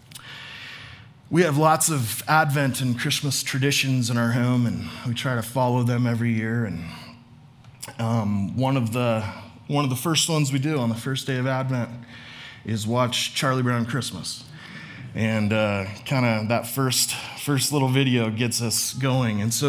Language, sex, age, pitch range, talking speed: English, male, 20-39, 120-150 Hz, 170 wpm